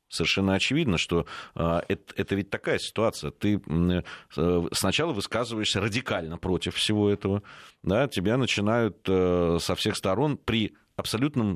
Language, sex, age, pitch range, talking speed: Russian, male, 30-49, 85-115 Hz, 120 wpm